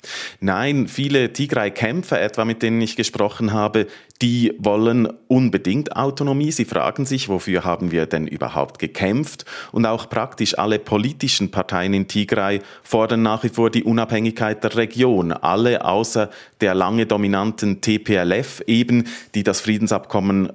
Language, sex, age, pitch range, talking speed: German, male, 30-49, 100-125 Hz, 140 wpm